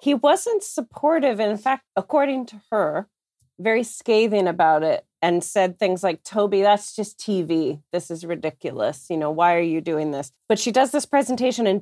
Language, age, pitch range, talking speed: English, 30-49, 180-225 Hz, 185 wpm